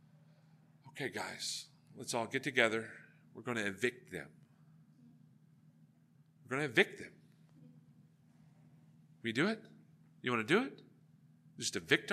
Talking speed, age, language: 130 wpm, 50-69, English